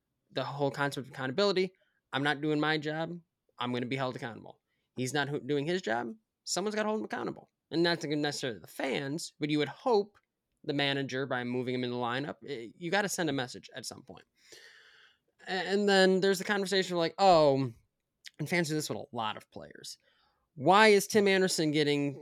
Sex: male